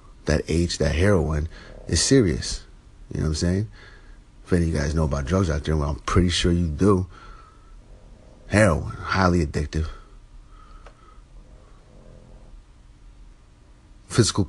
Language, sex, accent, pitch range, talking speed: English, male, American, 80-100 Hz, 130 wpm